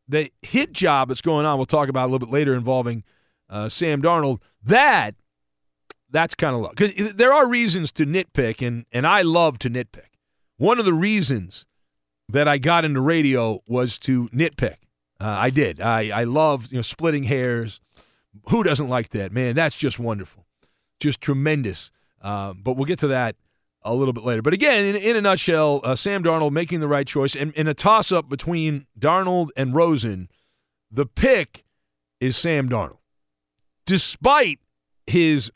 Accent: American